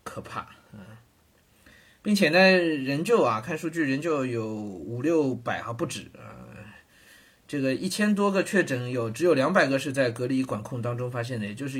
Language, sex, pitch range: Chinese, male, 110-165 Hz